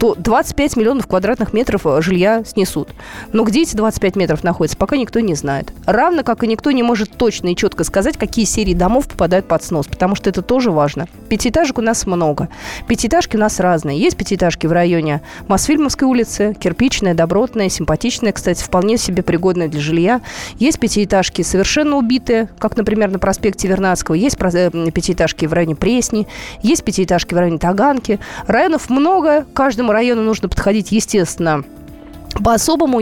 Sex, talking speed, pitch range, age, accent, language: female, 160 wpm, 180-250 Hz, 20-39, native, Russian